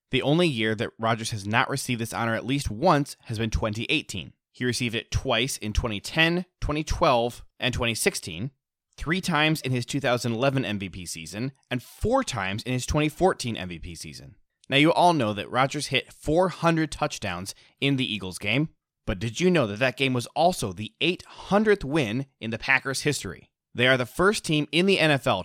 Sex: male